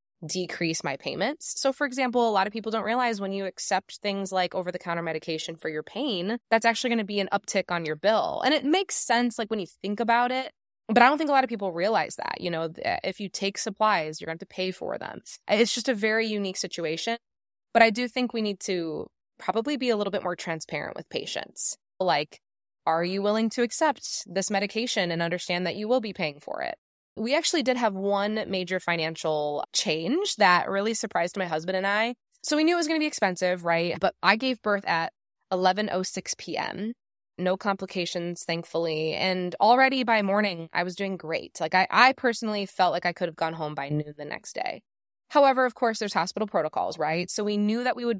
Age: 20-39